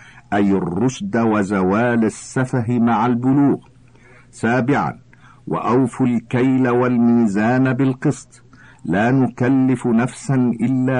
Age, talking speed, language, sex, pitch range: 50-69, 80 wpm, Arabic, male, 115-130 Hz